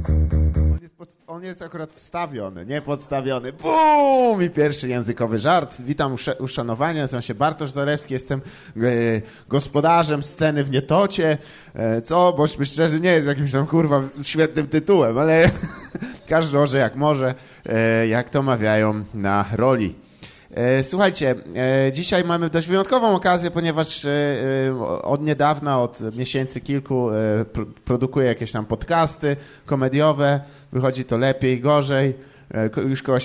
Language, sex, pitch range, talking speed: English, male, 125-155 Hz, 130 wpm